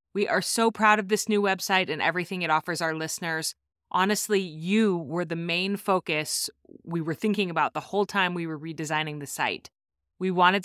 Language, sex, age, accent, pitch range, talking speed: English, female, 30-49, American, 165-200 Hz, 190 wpm